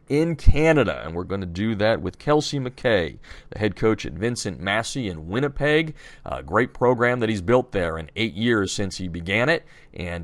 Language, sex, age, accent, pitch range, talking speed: English, male, 40-59, American, 100-135 Hz, 200 wpm